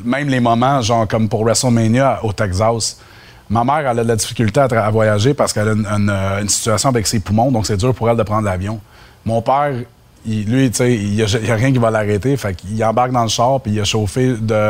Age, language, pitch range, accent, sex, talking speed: 30-49, French, 110-125 Hz, Canadian, male, 250 wpm